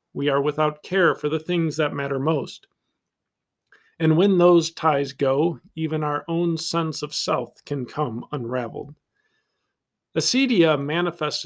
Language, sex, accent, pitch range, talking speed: English, male, American, 140-165 Hz, 135 wpm